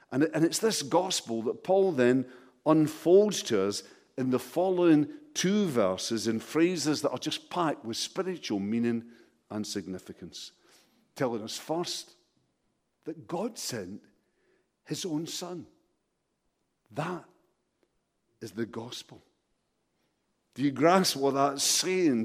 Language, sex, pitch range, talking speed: English, male, 125-195 Hz, 120 wpm